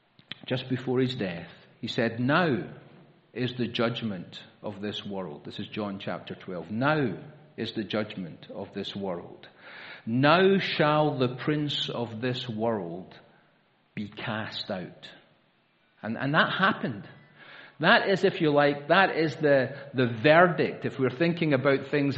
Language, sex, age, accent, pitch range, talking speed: English, male, 50-69, British, 120-160 Hz, 145 wpm